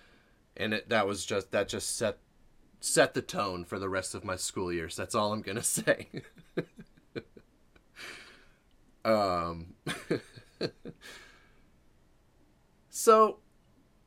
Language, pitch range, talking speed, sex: English, 95-130 Hz, 100 wpm, male